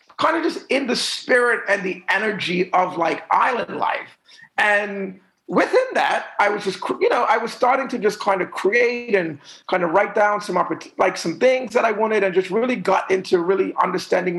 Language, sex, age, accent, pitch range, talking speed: English, male, 40-59, American, 165-225 Hz, 200 wpm